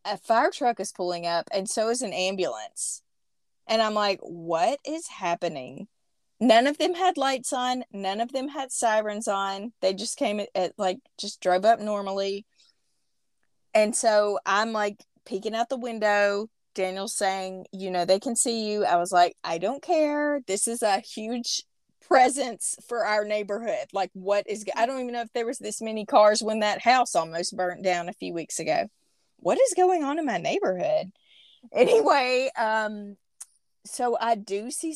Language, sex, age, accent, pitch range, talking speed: English, female, 30-49, American, 190-245 Hz, 180 wpm